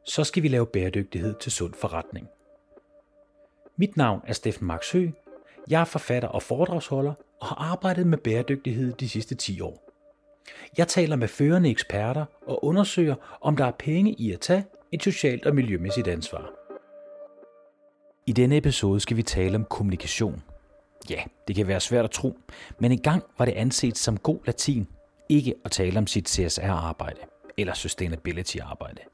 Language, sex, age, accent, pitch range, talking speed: Danish, male, 40-59, native, 95-150 Hz, 160 wpm